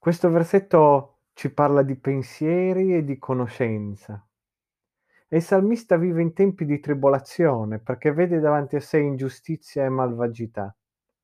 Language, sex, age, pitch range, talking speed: Italian, male, 40-59, 130-180 Hz, 135 wpm